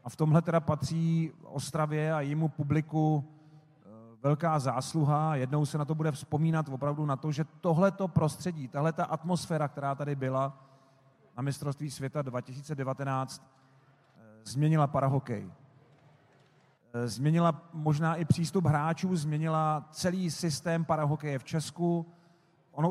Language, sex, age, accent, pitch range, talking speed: Czech, male, 40-59, native, 140-160 Hz, 120 wpm